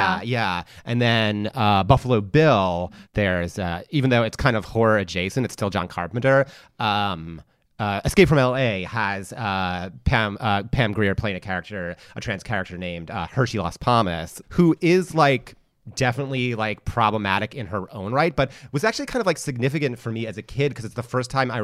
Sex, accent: male, American